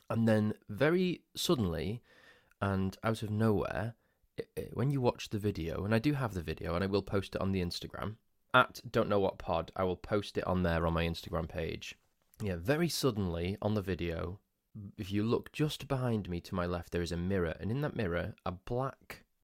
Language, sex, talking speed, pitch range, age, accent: English, male, 215 wpm, 90-110 Hz, 20-39, British